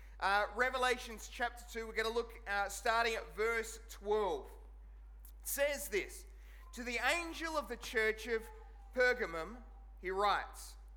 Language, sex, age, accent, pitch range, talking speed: English, male, 30-49, Australian, 215-260 Hz, 140 wpm